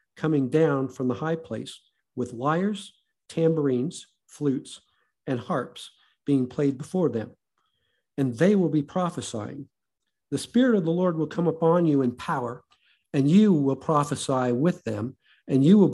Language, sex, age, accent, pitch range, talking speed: English, male, 50-69, American, 125-165 Hz, 155 wpm